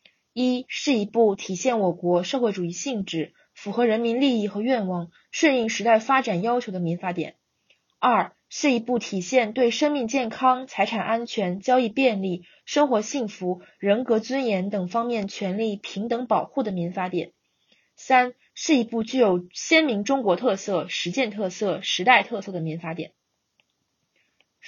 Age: 20-39